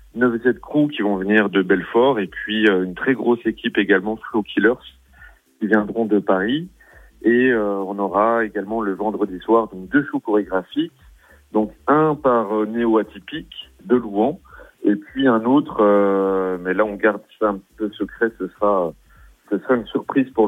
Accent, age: French, 40-59